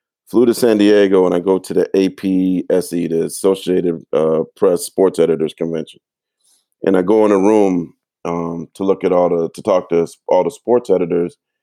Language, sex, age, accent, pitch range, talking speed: English, male, 40-59, American, 90-125 Hz, 185 wpm